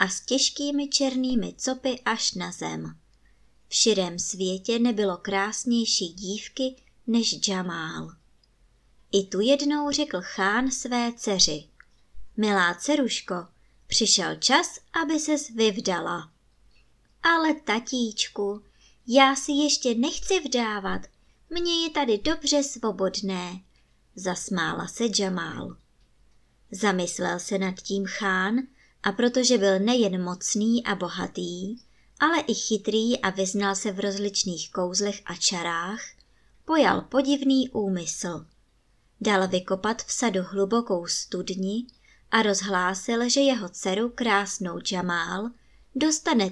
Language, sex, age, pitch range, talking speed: Czech, male, 20-39, 190-255 Hz, 110 wpm